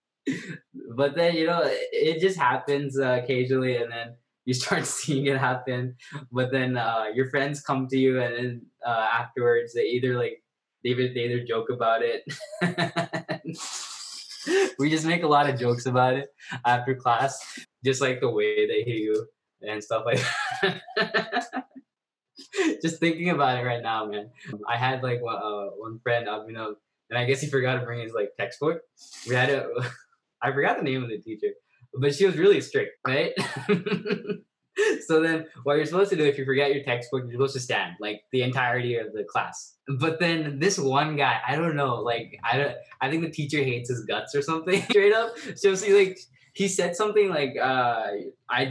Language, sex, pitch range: Telugu, male, 125-200 Hz